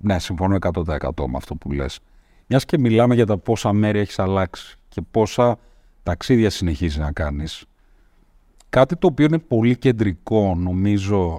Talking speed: 155 wpm